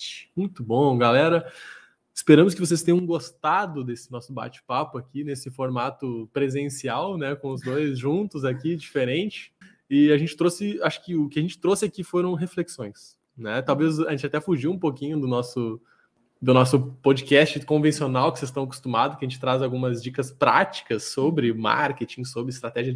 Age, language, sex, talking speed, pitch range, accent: 20-39, Portuguese, male, 170 wpm, 130-165 Hz, Brazilian